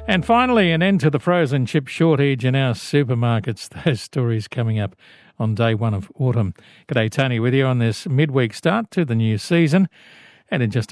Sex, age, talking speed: male, 50-69, 200 wpm